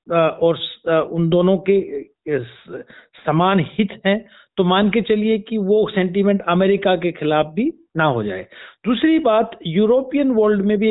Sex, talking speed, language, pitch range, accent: male, 150 wpm, Hindi, 155-205 Hz, native